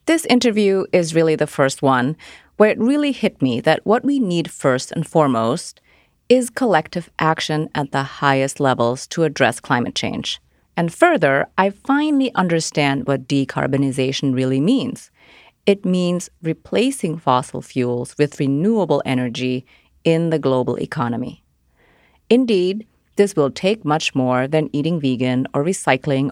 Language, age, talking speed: English, 30-49, 140 wpm